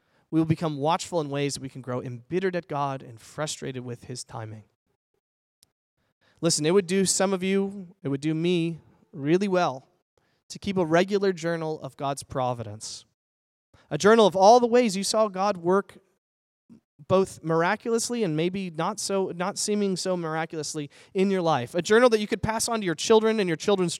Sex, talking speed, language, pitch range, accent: male, 190 wpm, English, 145-205 Hz, American